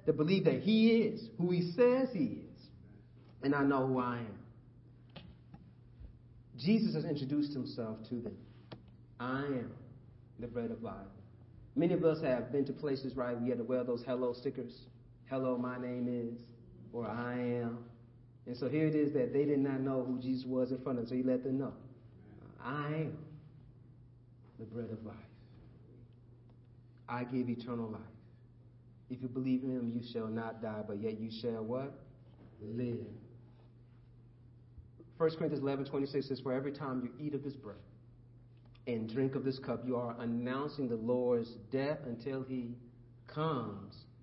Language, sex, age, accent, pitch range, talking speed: English, male, 40-59, American, 120-135 Hz, 170 wpm